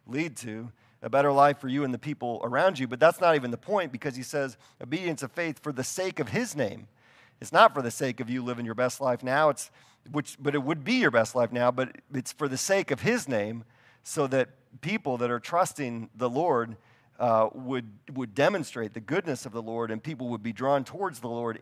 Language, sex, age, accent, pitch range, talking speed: English, male, 40-59, American, 115-140 Hz, 235 wpm